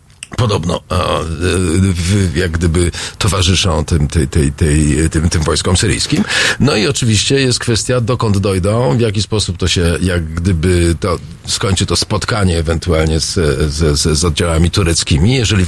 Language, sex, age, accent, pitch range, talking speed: Polish, male, 40-59, native, 85-115 Hz, 150 wpm